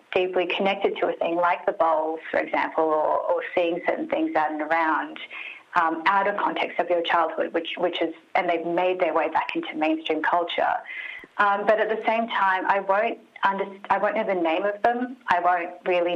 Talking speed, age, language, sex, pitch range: 210 wpm, 30-49, English, female, 165-200 Hz